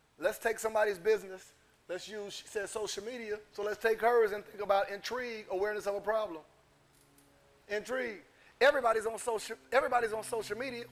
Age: 30-49